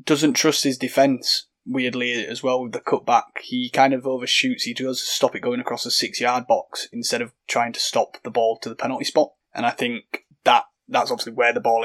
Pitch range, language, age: 120-175 Hz, English, 20-39